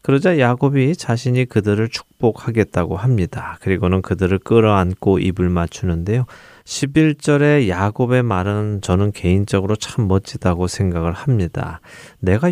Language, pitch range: Korean, 95-130 Hz